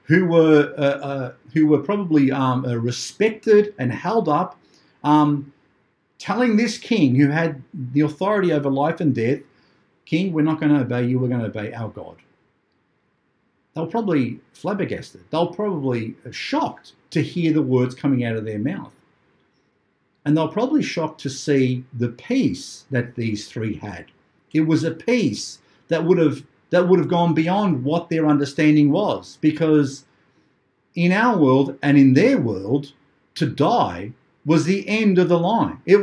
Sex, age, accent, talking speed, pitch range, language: male, 50-69, Australian, 160 wpm, 135-175 Hz, English